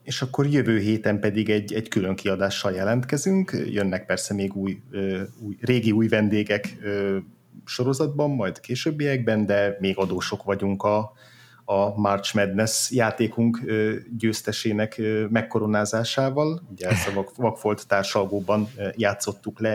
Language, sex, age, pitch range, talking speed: Hungarian, male, 30-49, 95-115 Hz, 130 wpm